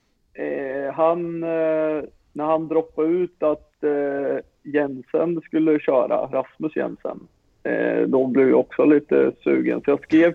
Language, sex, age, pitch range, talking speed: Swedish, male, 50-69, 135-165 Hz, 140 wpm